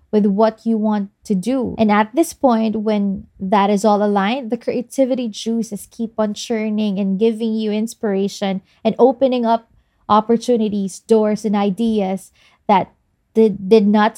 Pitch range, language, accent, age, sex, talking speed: 195-235 Hz, English, Filipino, 20-39, female, 150 wpm